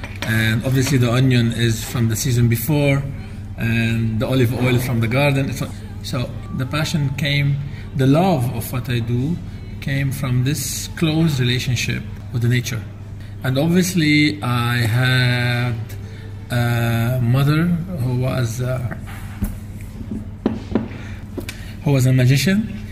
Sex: male